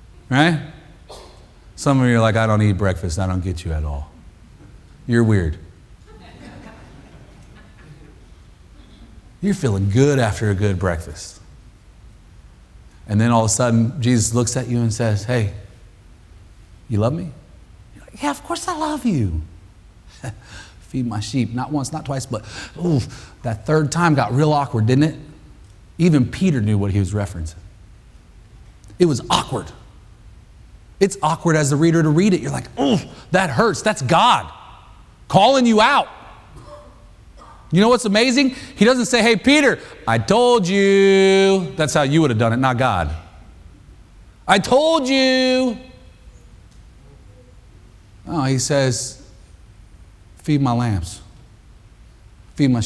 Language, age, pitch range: English, 30-49, 95-150 Hz